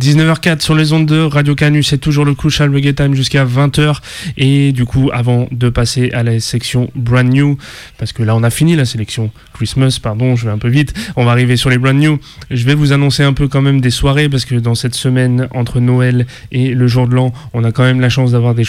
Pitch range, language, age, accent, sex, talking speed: 120-135 Hz, English, 20-39, French, male, 250 wpm